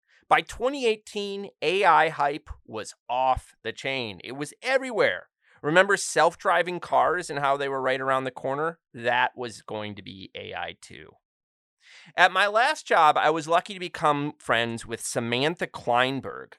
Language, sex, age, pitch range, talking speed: English, male, 30-49, 125-175 Hz, 150 wpm